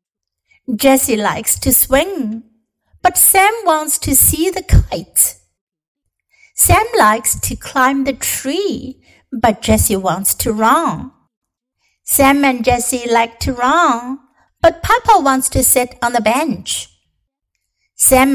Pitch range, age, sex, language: 225-295 Hz, 60-79, female, Chinese